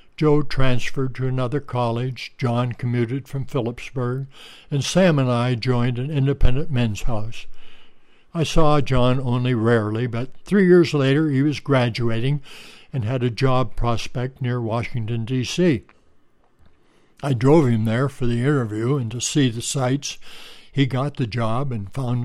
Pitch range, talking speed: 115-140 Hz, 150 wpm